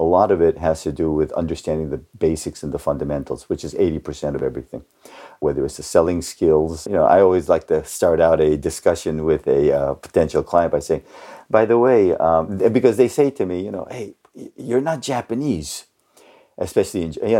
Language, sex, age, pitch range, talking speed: English, male, 50-69, 80-130 Hz, 205 wpm